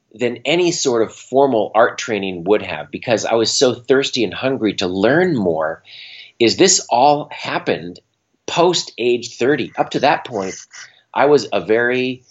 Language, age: English, 30-49